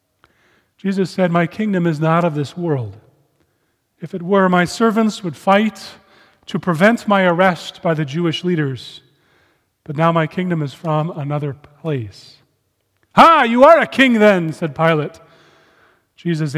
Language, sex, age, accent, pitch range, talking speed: English, male, 40-59, American, 150-195 Hz, 150 wpm